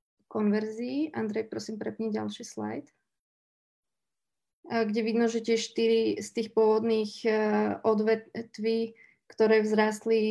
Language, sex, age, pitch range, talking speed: Slovak, female, 20-39, 210-230 Hz, 85 wpm